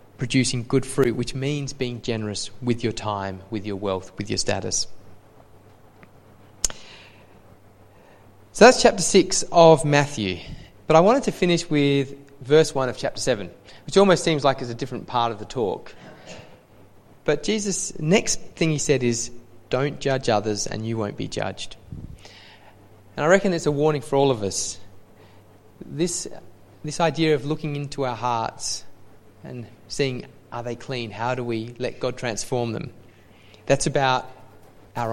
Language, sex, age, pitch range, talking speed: English, male, 30-49, 105-135 Hz, 155 wpm